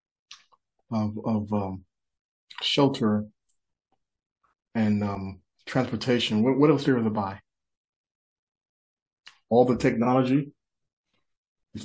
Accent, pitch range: American, 105-125 Hz